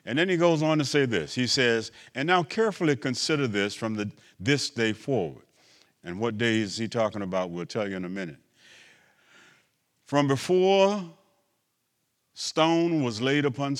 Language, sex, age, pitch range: English, male, 50-69, 100-150 Hz